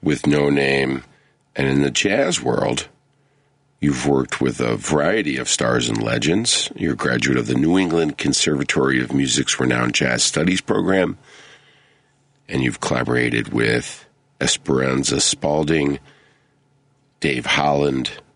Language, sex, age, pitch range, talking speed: English, male, 50-69, 70-105 Hz, 130 wpm